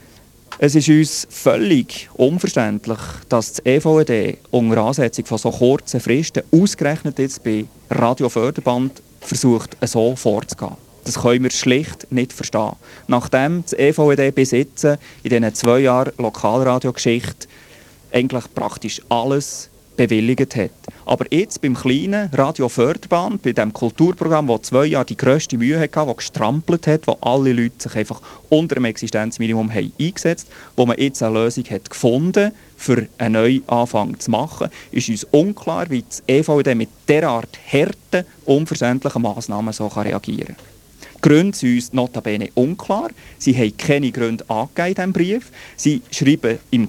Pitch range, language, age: 120-150 Hz, English, 30-49